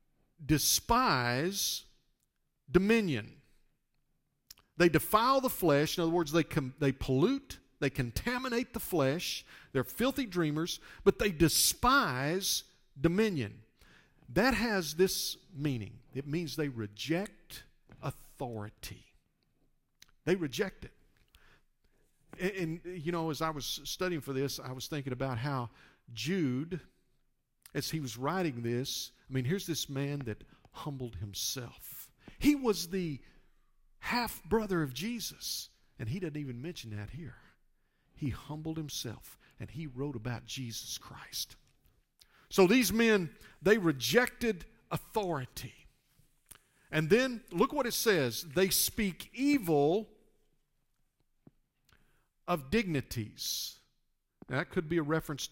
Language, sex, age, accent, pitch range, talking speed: English, male, 50-69, American, 130-180 Hz, 120 wpm